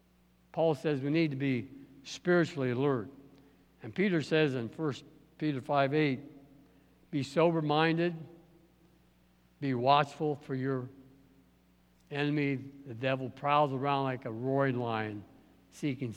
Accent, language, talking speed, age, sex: American, English, 120 wpm, 60-79, male